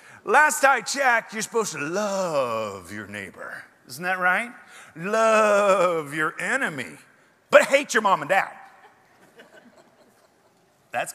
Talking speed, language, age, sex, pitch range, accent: 120 wpm, English, 50-69, male, 160-240 Hz, American